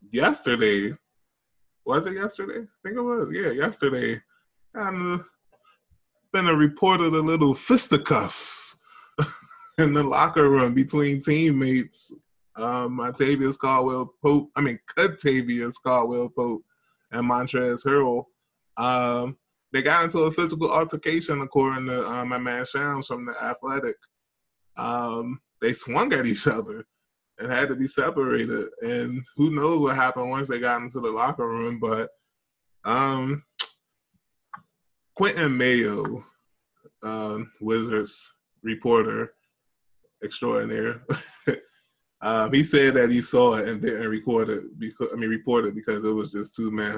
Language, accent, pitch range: English, American, 115-155 Hz